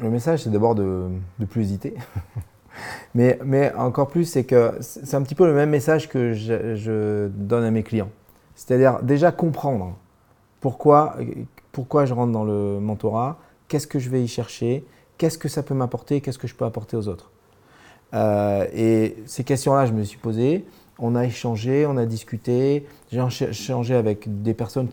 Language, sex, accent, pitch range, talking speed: French, male, French, 105-135 Hz, 180 wpm